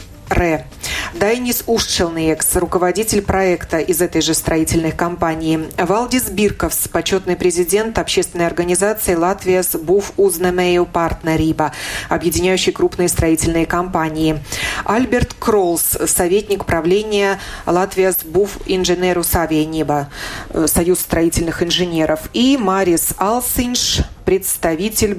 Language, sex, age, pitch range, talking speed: Russian, female, 30-49, 160-205 Hz, 95 wpm